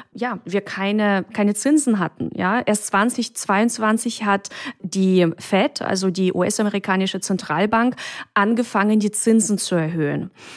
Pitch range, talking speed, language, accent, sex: 190-240 Hz, 120 wpm, German, German, female